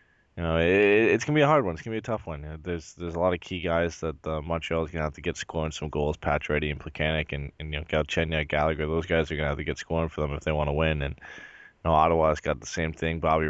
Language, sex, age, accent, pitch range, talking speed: English, male, 20-39, American, 80-90 Hz, 310 wpm